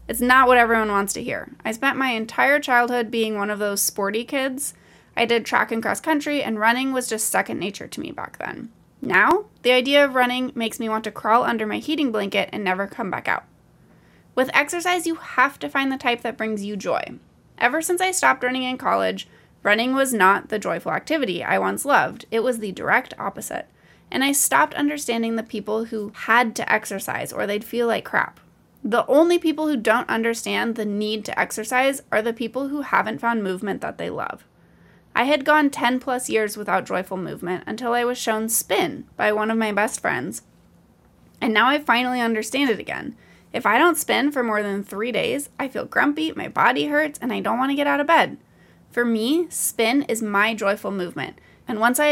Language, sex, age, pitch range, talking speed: English, female, 20-39, 215-270 Hz, 210 wpm